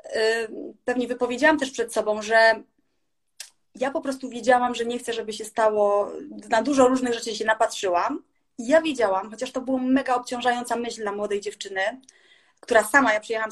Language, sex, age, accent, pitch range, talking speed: Polish, female, 30-49, native, 210-260 Hz, 170 wpm